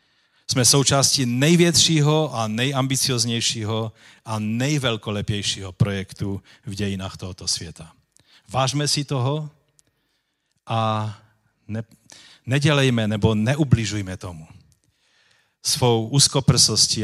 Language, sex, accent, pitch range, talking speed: Czech, male, native, 105-130 Hz, 80 wpm